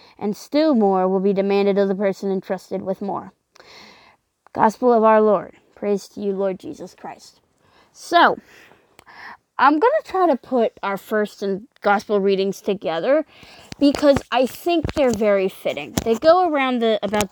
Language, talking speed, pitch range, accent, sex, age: English, 160 wpm, 195-285 Hz, American, female, 20-39